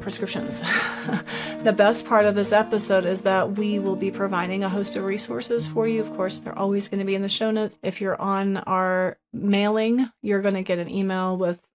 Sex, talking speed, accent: female, 215 wpm, American